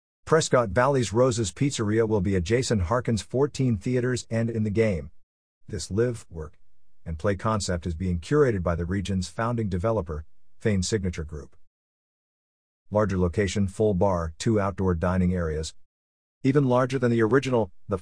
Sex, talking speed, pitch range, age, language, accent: male, 150 wpm, 95-125 Hz, 50-69, English, American